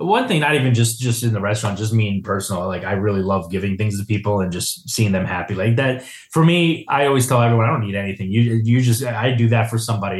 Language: English